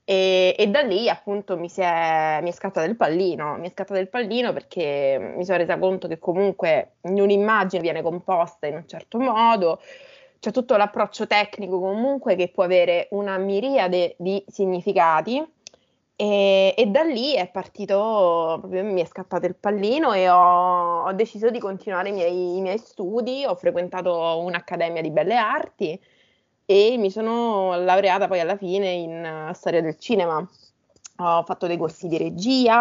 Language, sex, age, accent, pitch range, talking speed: Italian, female, 20-39, native, 175-205 Hz, 170 wpm